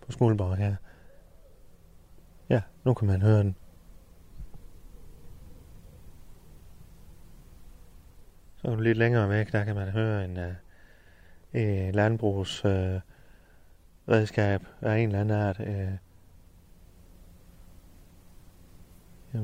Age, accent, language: 30-49, native, Danish